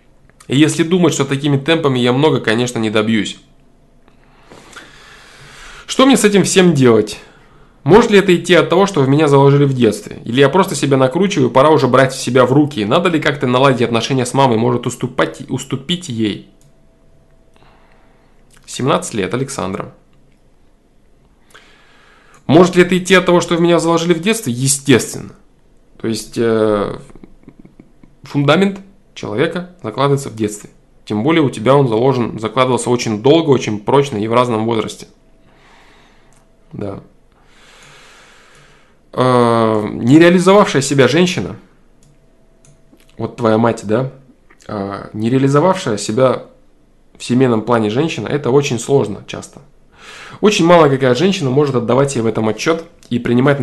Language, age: Russian, 20-39